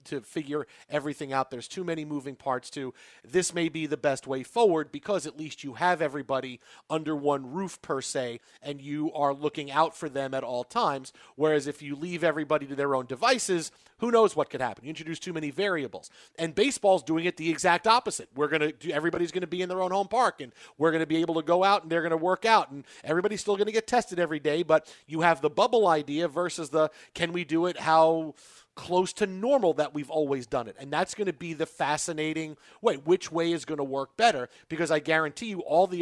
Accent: American